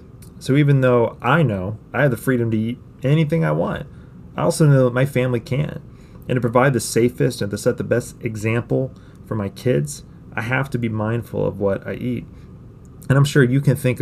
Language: English